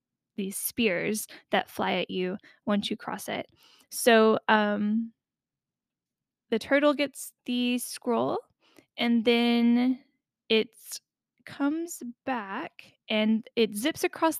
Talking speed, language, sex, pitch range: 110 wpm, English, female, 210-255 Hz